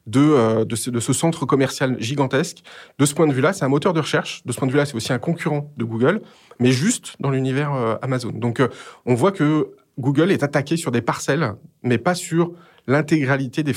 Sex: male